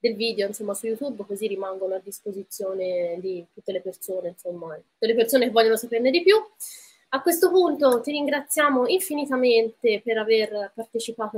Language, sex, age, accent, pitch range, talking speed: Italian, female, 20-39, native, 210-265 Hz, 160 wpm